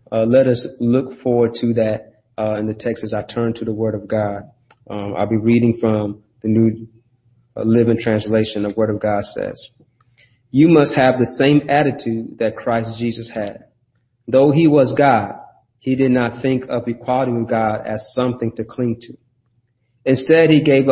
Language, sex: English, male